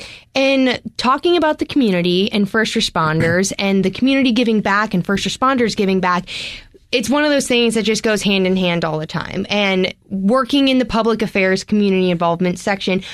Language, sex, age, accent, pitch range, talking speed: English, female, 20-39, American, 190-235 Hz, 185 wpm